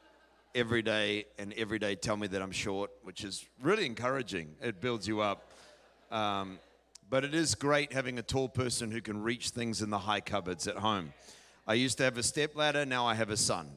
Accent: Australian